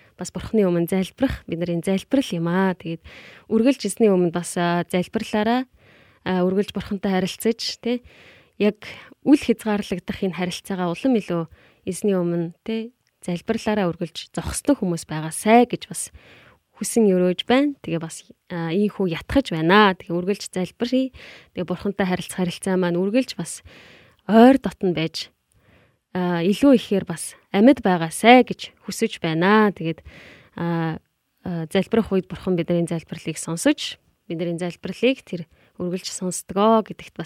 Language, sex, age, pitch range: Korean, female, 20-39, 175-220 Hz